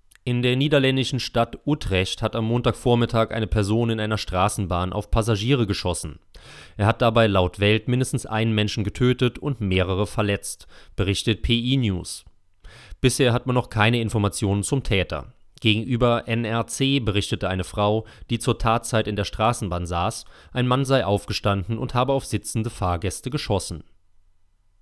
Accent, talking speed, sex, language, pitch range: German, 145 wpm, male, German, 100-120 Hz